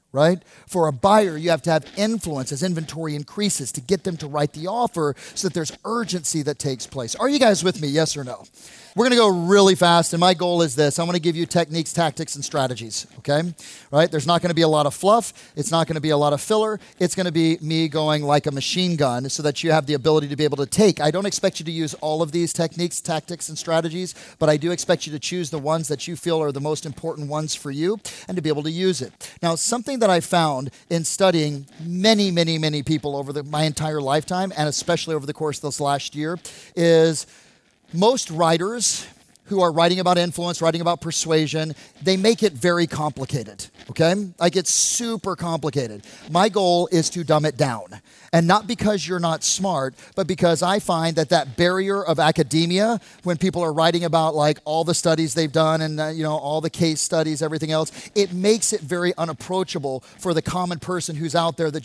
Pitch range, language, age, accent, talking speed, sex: 155-180 Hz, English, 40-59, American, 230 wpm, male